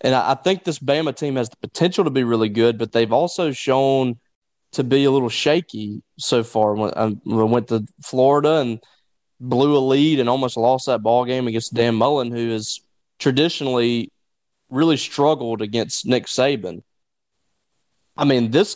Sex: male